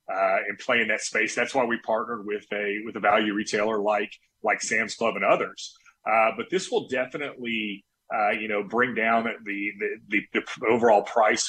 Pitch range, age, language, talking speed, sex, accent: 110-135 Hz, 30-49, English, 200 wpm, male, American